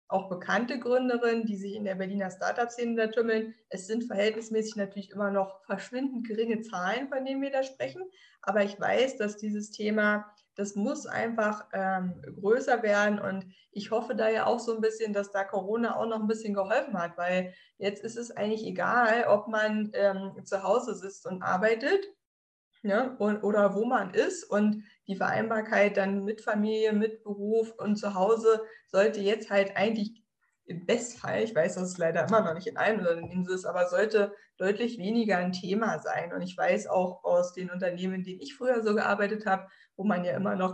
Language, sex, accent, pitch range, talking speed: German, female, German, 185-220 Hz, 195 wpm